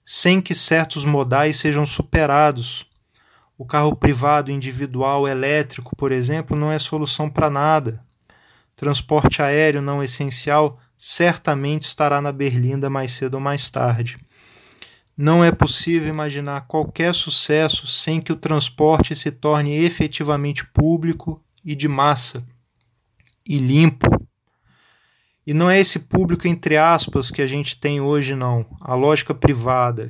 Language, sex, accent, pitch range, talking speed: Portuguese, male, Brazilian, 135-155 Hz, 130 wpm